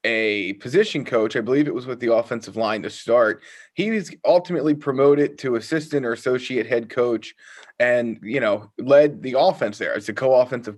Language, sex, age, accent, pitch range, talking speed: English, male, 20-39, American, 120-150 Hz, 185 wpm